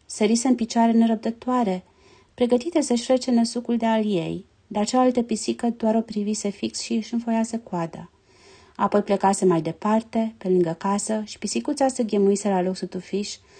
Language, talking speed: Romanian, 160 wpm